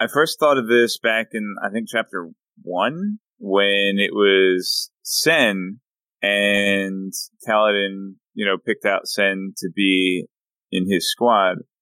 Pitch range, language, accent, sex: 90-110 Hz, English, American, male